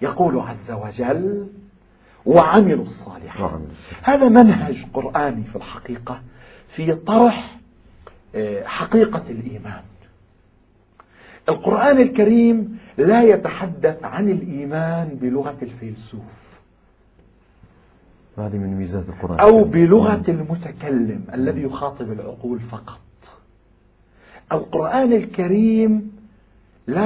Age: 50-69